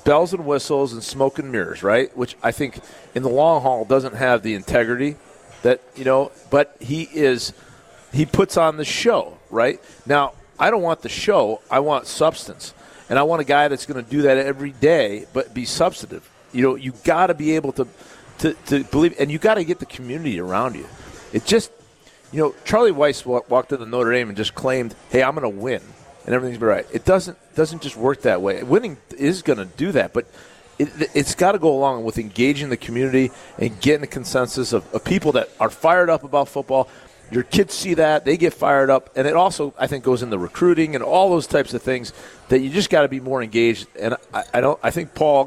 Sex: male